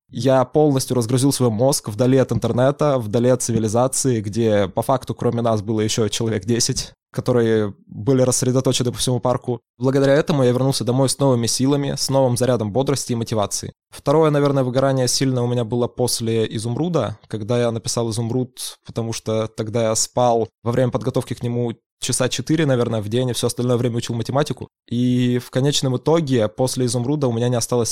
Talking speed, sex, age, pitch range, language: 180 wpm, male, 20-39, 115-130 Hz, Russian